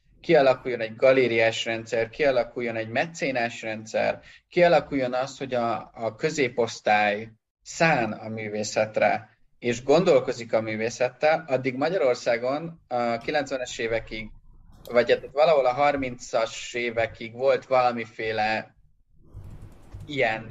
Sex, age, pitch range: male, 30-49, 115-140 Hz